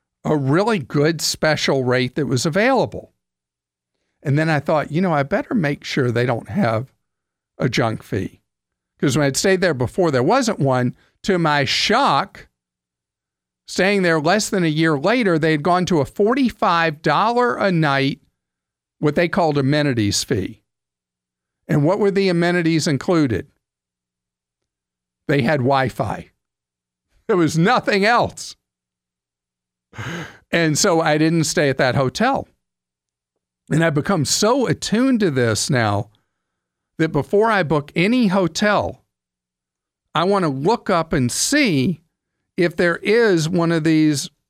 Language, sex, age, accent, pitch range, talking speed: English, male, 50-69, American, 110-180 Hz, 140 wpm